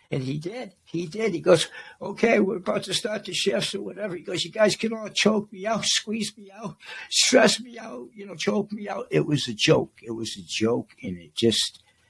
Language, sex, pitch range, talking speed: English, male, 140-205 Hz, 235 wpm